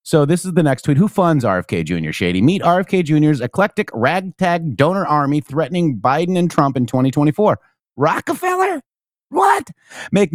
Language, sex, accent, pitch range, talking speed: English, male, American, 120-155 Hz, 155 wpm